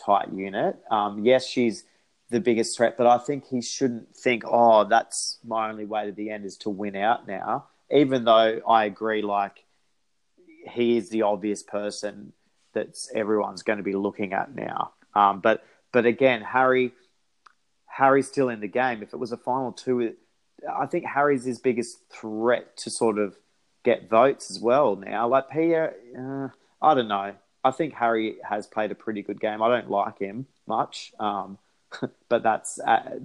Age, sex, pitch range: 30-49, male, 105-125 Hz